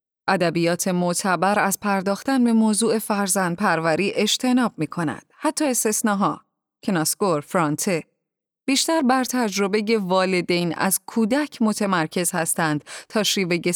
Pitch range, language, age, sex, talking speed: 170-235 Hz, Persian, 30-49, female, 110 wpm